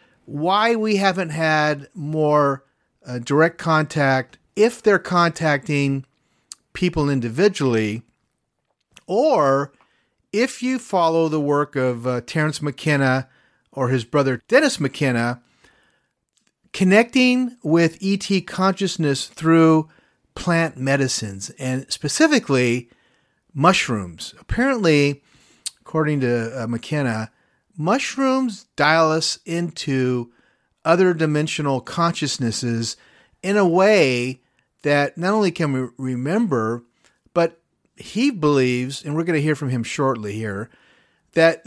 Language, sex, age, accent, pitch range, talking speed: English, male, 40-59, American, 125-170 Hz, 105 wpm